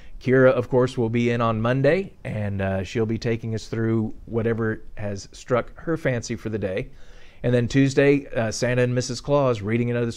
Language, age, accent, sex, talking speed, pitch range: English, 40-59, American, male, 195 wpm, 110-130 Hz